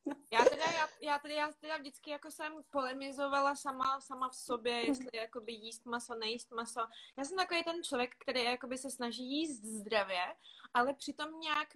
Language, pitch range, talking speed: Czech, 235-275 Hz, 170 wpm